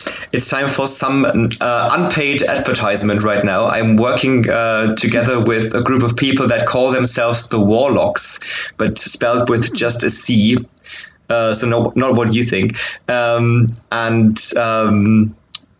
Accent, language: German, English